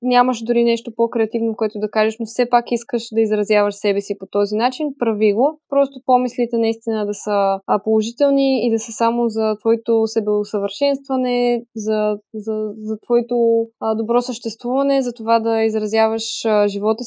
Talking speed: 155 wpm